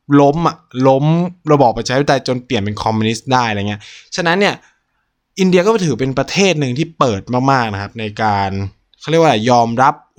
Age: 20-39